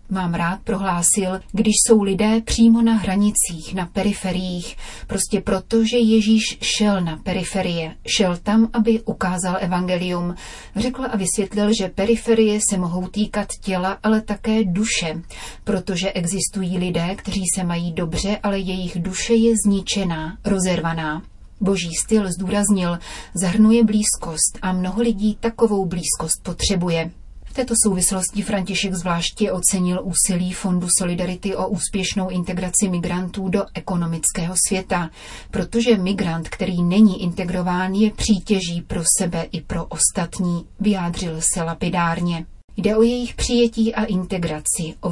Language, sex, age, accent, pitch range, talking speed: Czech, female, 30-49, native, 180-210 Hz, 130 wpm